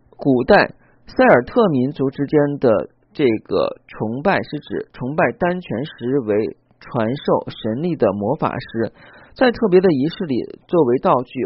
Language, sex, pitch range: Chinese, male, 125-180 Hz